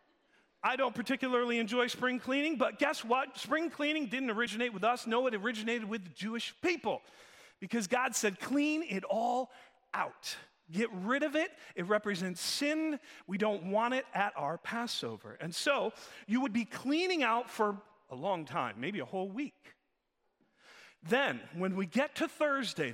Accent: American